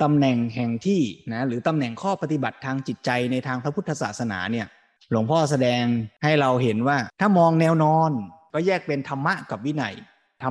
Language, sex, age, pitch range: Thai, male, 20-39, 125-165 Hz